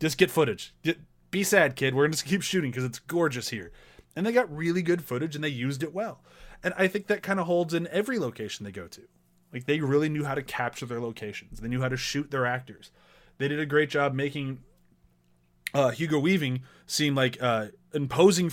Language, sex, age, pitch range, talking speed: English, male, 20-39, 120-160 Hz, 225 wpm